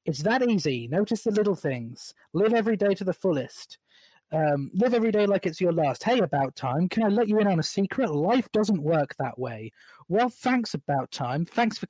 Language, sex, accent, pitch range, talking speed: English, male, British, 155-195 Hz, 215 wpm